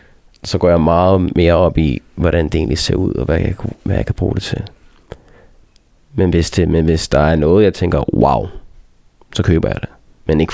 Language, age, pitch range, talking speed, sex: Danish, 20-39, 85-100 Hz, 215 wpm, male